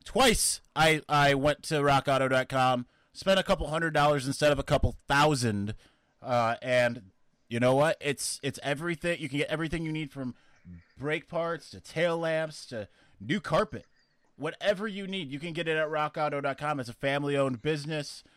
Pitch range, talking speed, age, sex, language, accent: 130-175 Hz, 175 wpm, 30-49, male, English, American